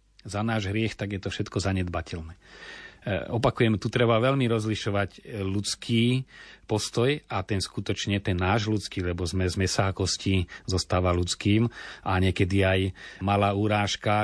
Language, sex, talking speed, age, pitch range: Slovak, male, 140 wpm, 40-59, 95-110 Hz